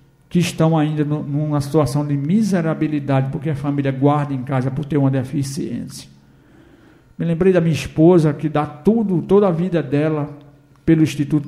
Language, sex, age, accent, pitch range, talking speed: Portuguese, male, 60-79, Brazilian, 140-160 Hz, 160 wpm